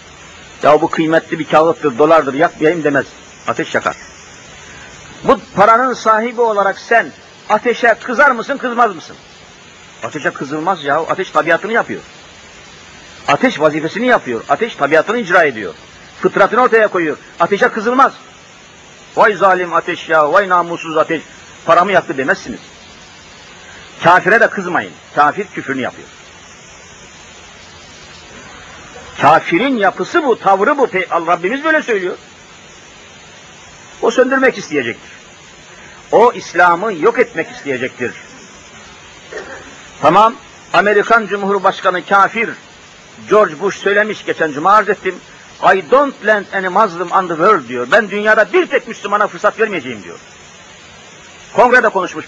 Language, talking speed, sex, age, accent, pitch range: Turkish, 115 wpm, male, 50-69, native, 160-225 Hz